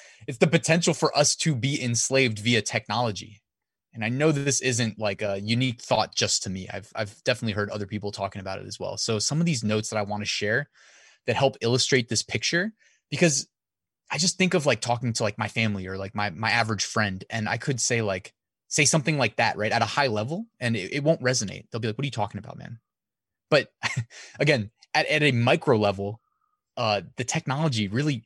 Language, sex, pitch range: English, male, 105-135 Hz